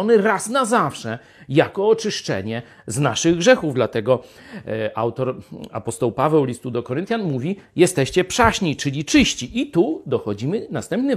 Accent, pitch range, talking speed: native, 105-160 Hz, 130 wpm